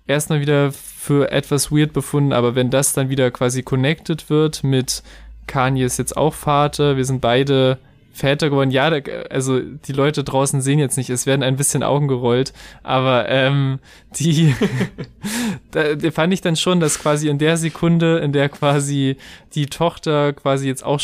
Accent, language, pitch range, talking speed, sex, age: German, German, 125-145 Hz, 175 wpm, male, 20-39